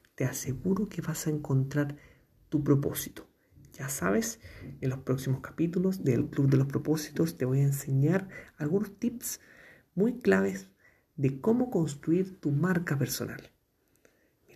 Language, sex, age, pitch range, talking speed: Spanish, male, 50-69, 130-185 Hz, 140 wpm